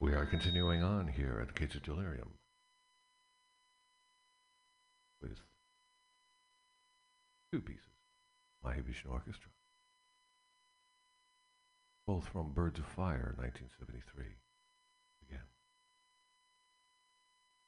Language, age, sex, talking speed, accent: English, 60-79, male, 70 wpm, American